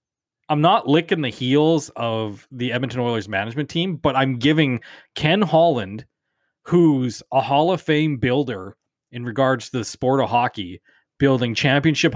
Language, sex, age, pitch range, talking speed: English, male, 20-39, 120-155 Hz, 155 wpm